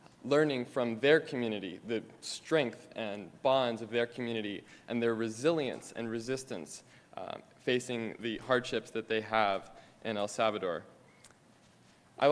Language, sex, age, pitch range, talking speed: English, male, 20-39, 110-125 Hz, 130 wpm